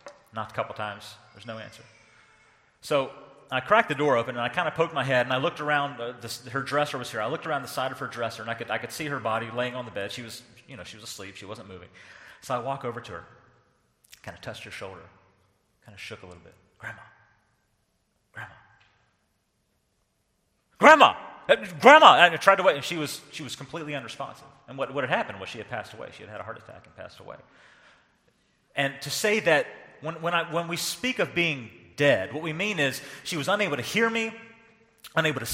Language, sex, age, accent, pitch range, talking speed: English, male, 40-59, American, 115-180 Hz, 230 wpm